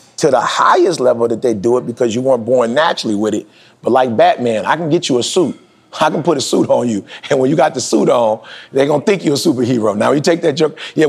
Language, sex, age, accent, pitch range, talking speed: English, male, 30-49, American, 125-175 Hz, 270 wpm